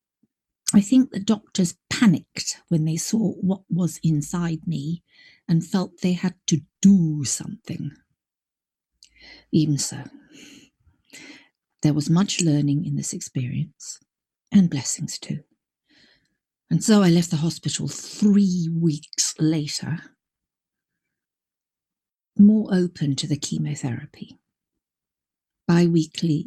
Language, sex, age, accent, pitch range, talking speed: English, female, 50-69, British, 155-195 Hz, 105 wpm